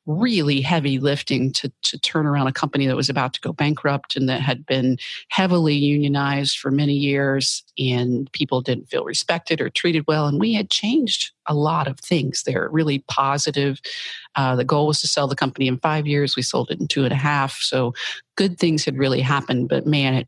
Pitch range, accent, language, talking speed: 135-165 Hz, American, English, 215 wpm